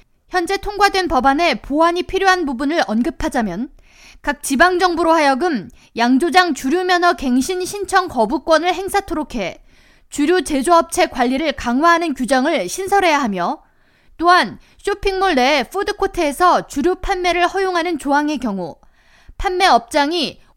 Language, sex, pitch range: Korean, female, 275-370 Hz